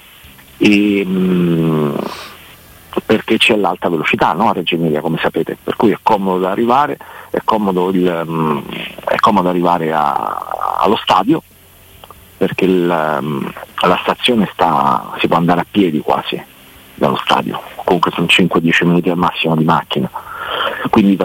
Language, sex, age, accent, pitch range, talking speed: Italian, male, 40-59, native, 85-105 Hz, 135 wpm